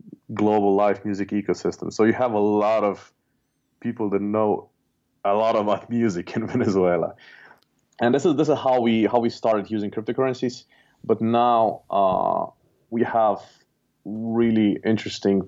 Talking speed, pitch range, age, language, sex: 145 wpm, 100-110 Hz, 30-49, English, male